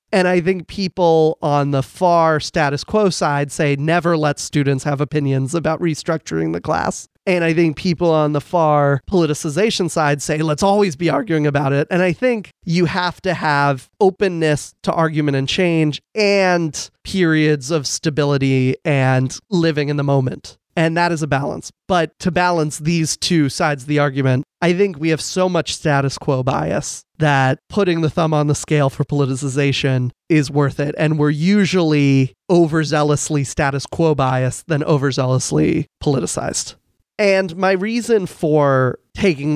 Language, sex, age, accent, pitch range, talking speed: English, male, 30-49, American, 140-175 Hz, 160 wpm